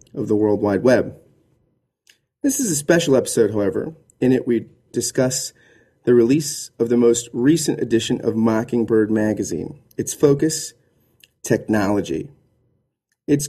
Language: English